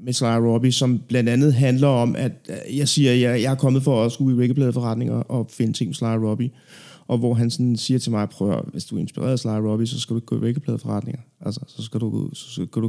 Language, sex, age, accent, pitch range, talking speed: Danish, male, 30-49, native, 115-145 Hz, 250 wpm